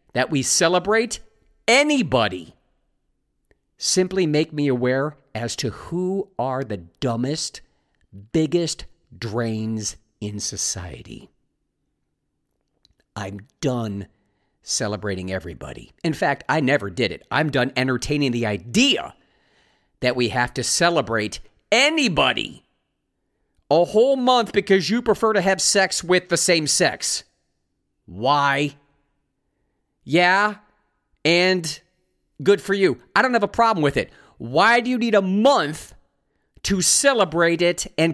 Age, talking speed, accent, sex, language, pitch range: 50-69, 120 wpm, American, male, English, 130-205 Hz